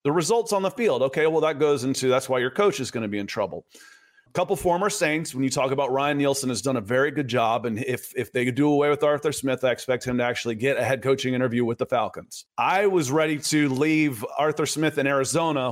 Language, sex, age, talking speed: English, male, 30-49, 265 wpm